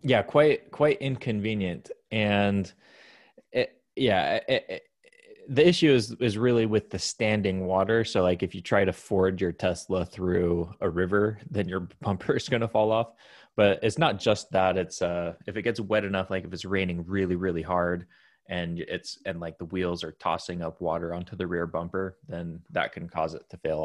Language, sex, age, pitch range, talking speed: English, male, 20-39, 90-115 Hz, 195 wpm